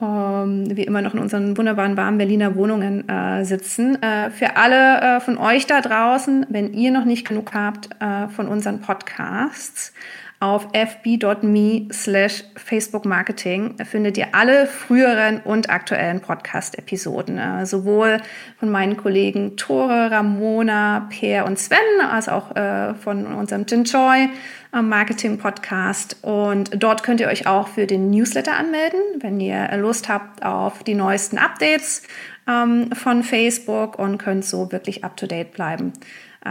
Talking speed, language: 135 wpm, German